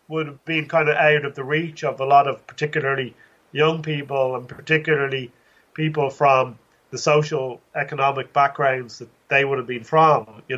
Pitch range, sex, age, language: 130-155 Hz, male, 30-49, English